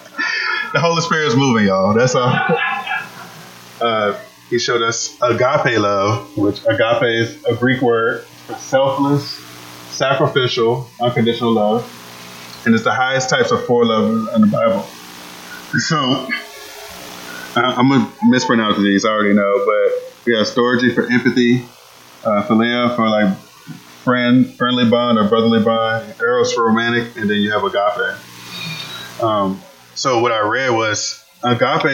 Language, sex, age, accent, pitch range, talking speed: English, male, 20-39, American, 95-125 Hz, 145 wpm